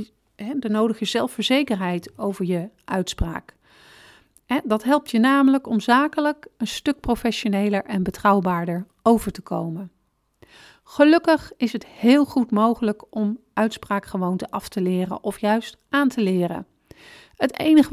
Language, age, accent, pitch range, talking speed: Dutch, 40-59, Dutch, 200-260 Hz, 125 wpm